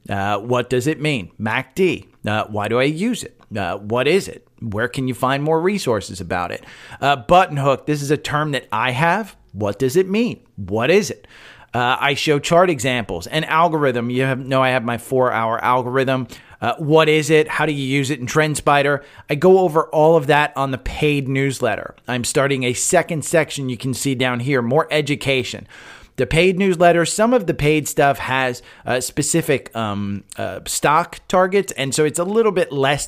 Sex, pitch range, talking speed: male, 125-160 Hz, 205 wpm